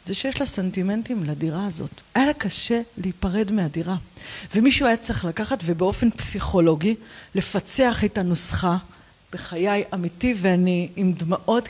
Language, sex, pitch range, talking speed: Hebrew, female, 185-255 Hz, 130 wpm